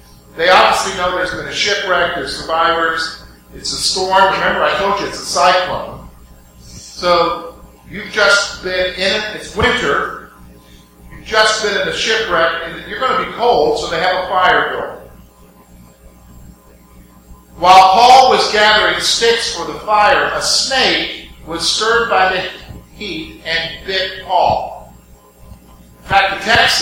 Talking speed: 150 wpm